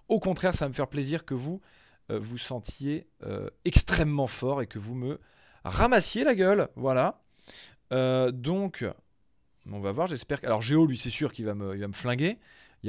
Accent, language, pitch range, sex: French, French, 100-140 Hz, male